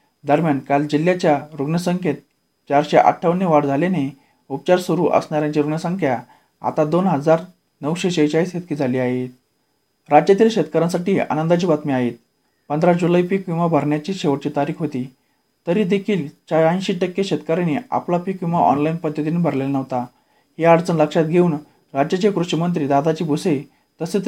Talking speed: 135 wpm